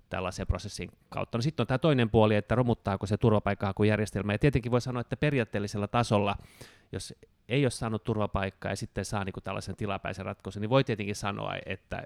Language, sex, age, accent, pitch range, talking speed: Finnish, male, 30-49, native, 100-115 Hz, 195 wpm